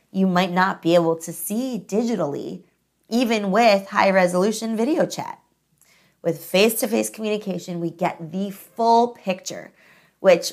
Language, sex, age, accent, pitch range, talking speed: English, female, 20-39, American, 170-220 Hz, 125 wpm